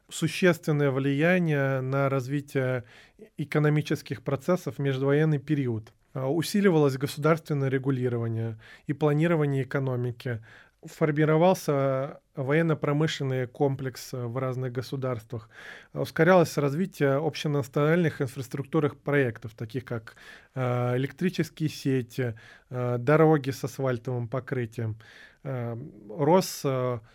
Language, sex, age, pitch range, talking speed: Russian, male, 20-39, 130-155 Hz, 75 wpm